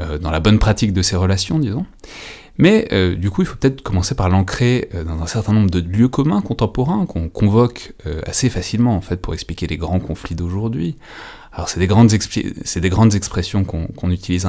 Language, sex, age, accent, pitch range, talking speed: French, male, 30-49, French, 85-105 Hz, 195 wpm